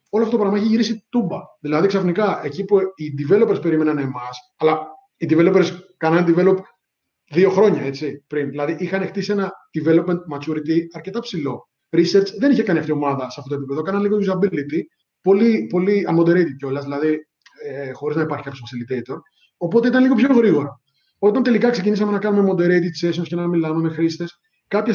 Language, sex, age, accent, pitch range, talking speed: Greek, male, 20-39, native, 150-205 Hz, 180 wpm